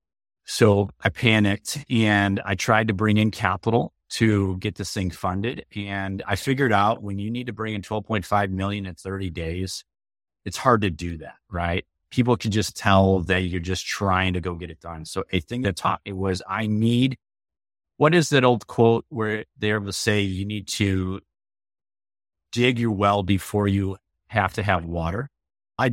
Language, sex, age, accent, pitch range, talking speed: English, male, 30-49, American, 90-110 Hz, 185 wpm